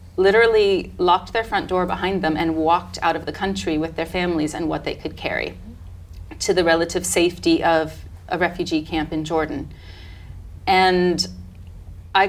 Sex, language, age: female, English, 30-49